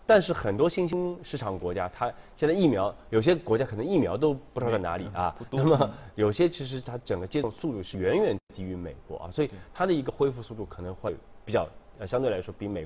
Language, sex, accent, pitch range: Chinese, male, native, 90-125 Hz